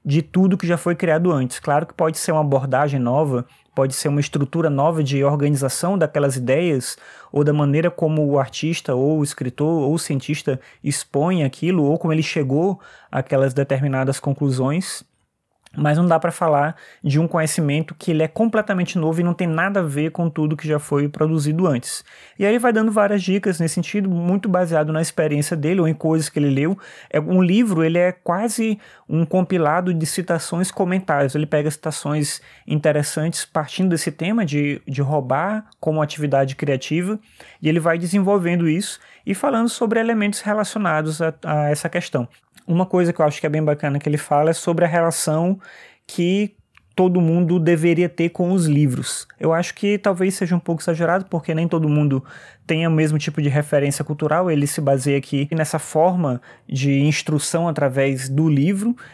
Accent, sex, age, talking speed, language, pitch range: Brazilian, male, 20-39, 180 wpm, Portuguese, 145-180 Hz